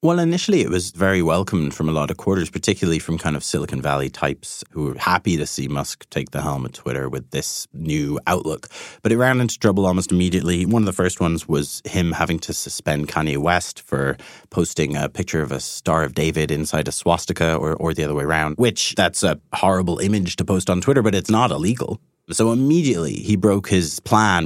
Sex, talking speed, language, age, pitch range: male, 220 wpm, English, 30-49, 80-105 Hz